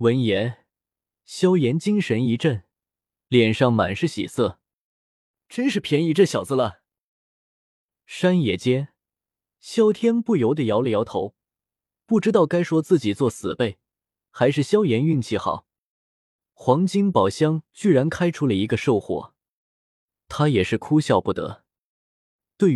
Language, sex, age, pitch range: Chinese, male, 20-39, 105-160 Hz